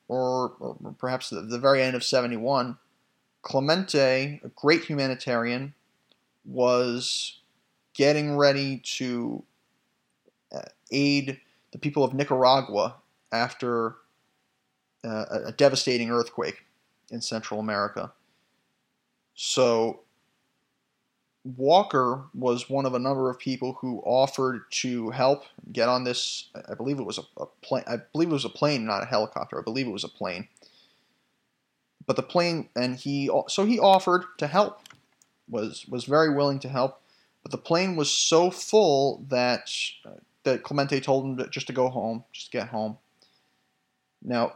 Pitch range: 125-140 Hz